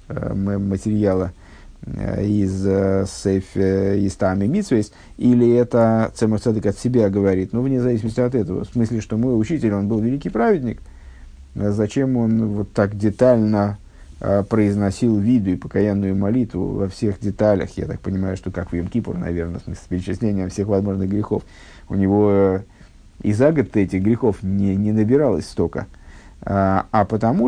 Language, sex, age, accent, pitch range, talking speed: Russian, male, 50-69, native, 95-125 Hz, 145 wpm